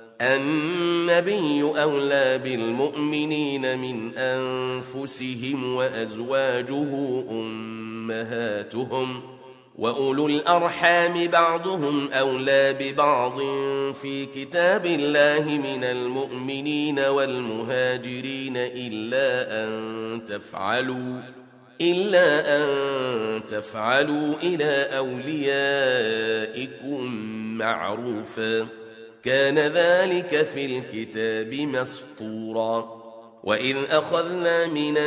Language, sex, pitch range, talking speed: Arabic, male, 125-145 Hz, 60 wpm